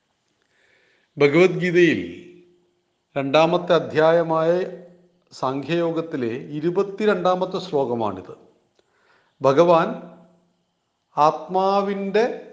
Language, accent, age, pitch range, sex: Malayalam, native, 40-59, 145-190 Hz, male